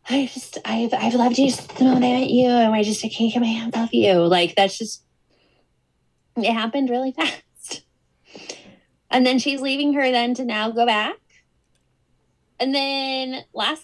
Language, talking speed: English, 180 wpm